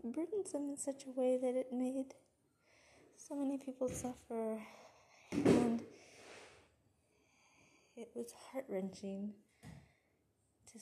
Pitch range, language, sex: 200-255 Hz, English, female